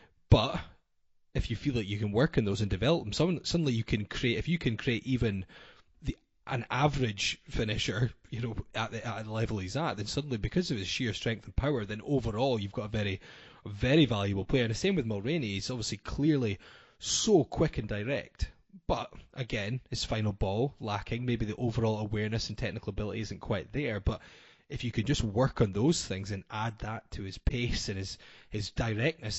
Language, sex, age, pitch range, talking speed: English, male, 20-39, 105-125 Hz, 200 wpm